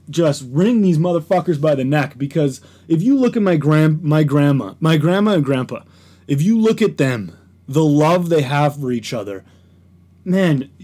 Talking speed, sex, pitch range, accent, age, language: 185 wpm, male, 140-195 Hz, American, 20-39, English